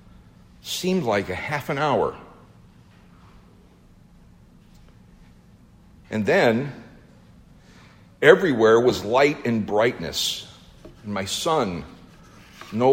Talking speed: 80 wpm